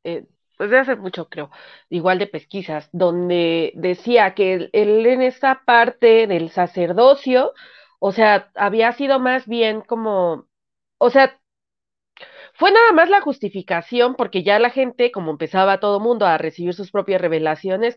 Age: 30-49